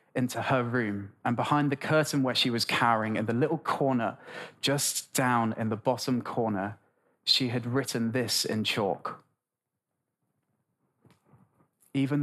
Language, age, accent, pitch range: English, 20-39, British, 115-140 Hz